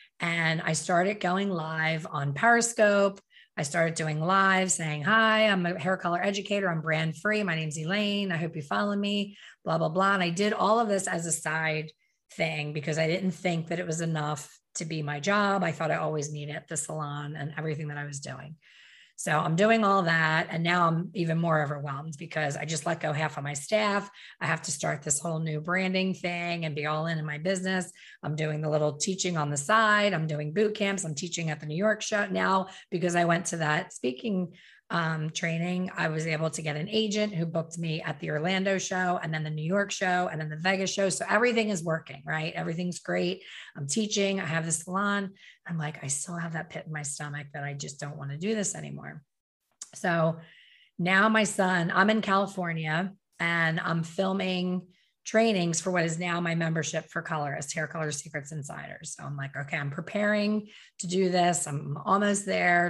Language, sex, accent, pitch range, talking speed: English, female, American, 155-190 Hz, 215 wpm